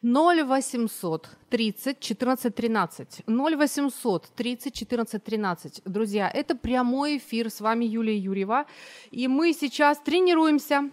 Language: Ukrainian